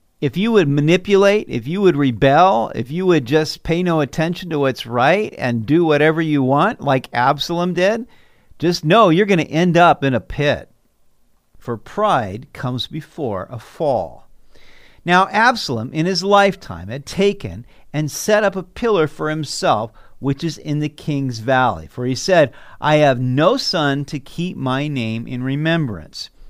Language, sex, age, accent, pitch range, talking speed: English, male, 50-69, American, 130-180 Hz, 170 wpm